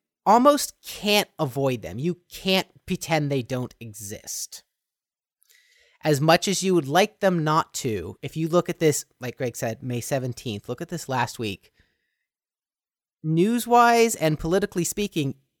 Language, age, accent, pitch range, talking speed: English, 30-49, American, 120-165 Hz, 150 wpm